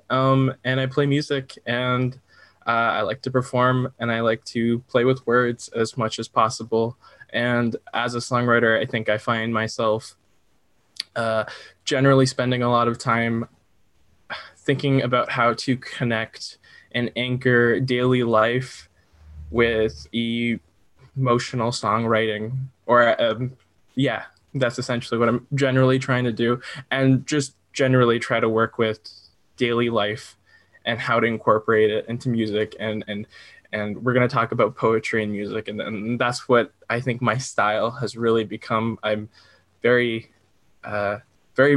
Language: English